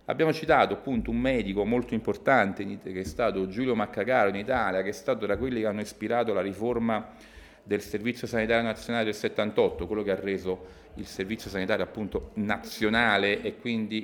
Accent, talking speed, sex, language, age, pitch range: native, 175 wpm, male, Italian, 40-59, 105-150 Hz